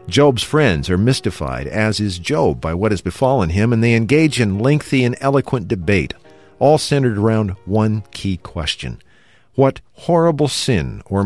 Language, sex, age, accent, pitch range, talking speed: English, male, 50-69, American, 85-115 Hz, 160 wpm